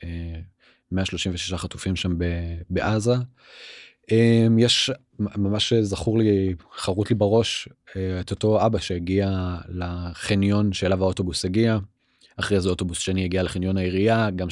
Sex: male